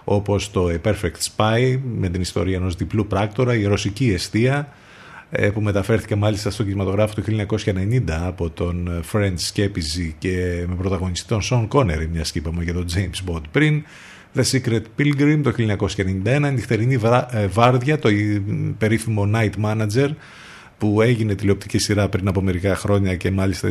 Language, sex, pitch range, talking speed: Greek, male, 95-120 Hz, 160 wpm